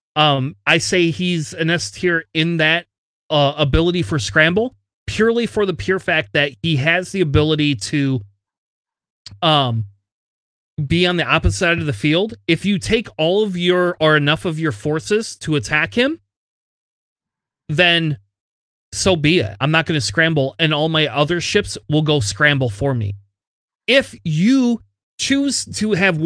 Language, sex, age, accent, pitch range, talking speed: English, male, 30-49, American, 145-190 Hz, 160 wpm